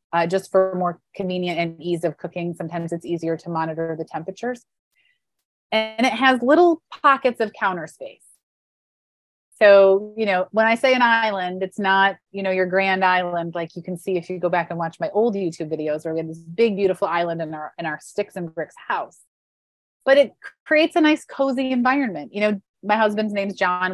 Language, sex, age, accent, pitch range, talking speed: English, female, 30-49, American, 180-230 Hz, 205 wpm